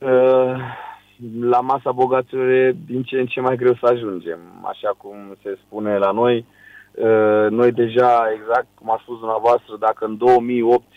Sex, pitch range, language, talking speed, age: male, 105-115 Hz, Romanian, 165 wpm, 30-49